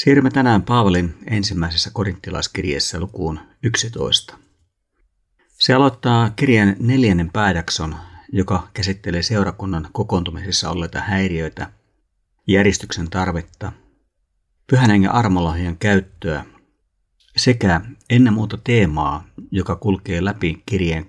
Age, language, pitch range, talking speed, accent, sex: 50-69, Finnish, 85-110 Hz, 90 wpm, native, male